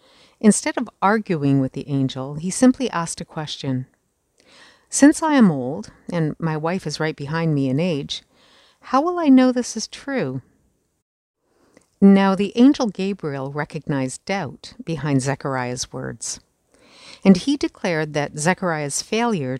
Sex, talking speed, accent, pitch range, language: female, 140 wpm, American, 145-215 Hz, English